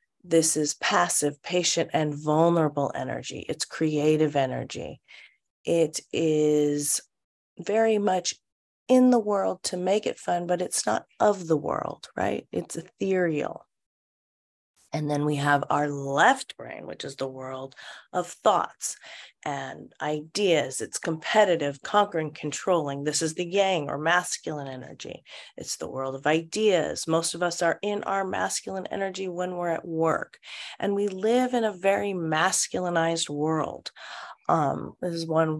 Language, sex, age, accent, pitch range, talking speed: English, female, 30-49, American, 155-195 Hz, 145 wpm